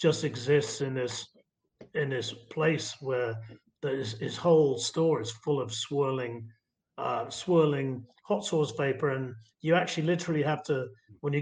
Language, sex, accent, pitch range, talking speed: English, male, British, 125-165 Hz, 150 wpm